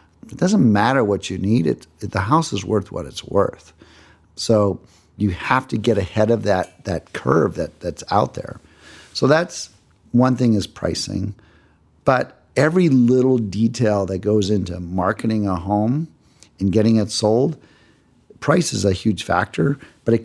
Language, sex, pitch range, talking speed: English, male, 95-120 Hz, 165 wpm